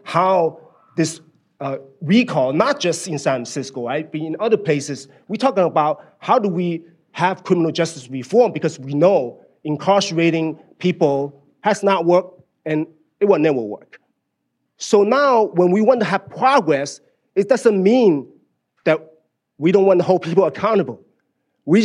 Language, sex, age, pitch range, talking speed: English, male, 30-49, 145-190 Hz, 155 wpm